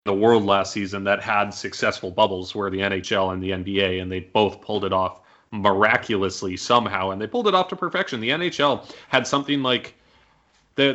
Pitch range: 100-115 Hz